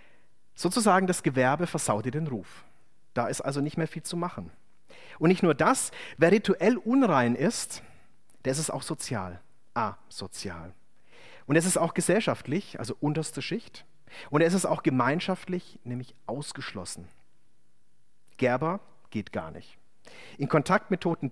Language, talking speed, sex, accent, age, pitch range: German, 145 wpm, male, German, 40-59, 135-185 Hz